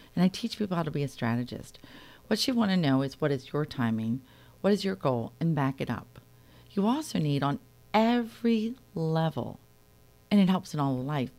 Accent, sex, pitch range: American, female, 130-185 Hz